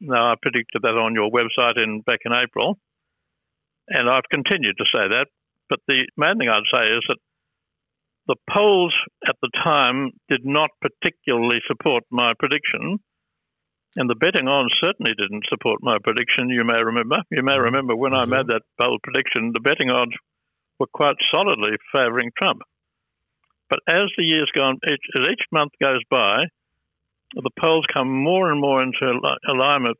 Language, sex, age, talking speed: English, male, 60-79, 170 wpm